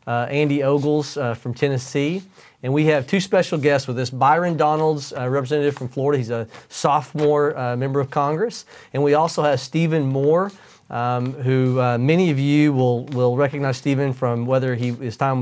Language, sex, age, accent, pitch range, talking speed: English, male, 40-59, American, 120-145 Hz, 185 wpm